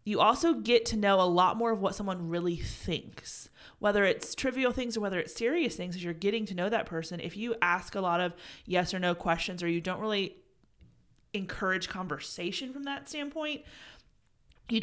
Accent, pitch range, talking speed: American, 170-215 Hz, 200 wpm